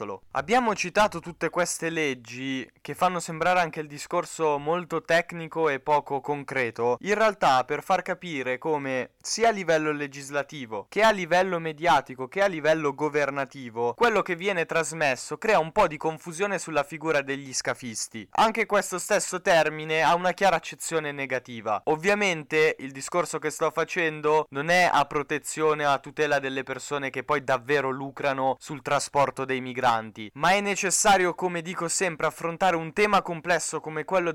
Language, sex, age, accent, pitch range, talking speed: Italian, male, 20-39, native, 140-180 Hz, 155 wpm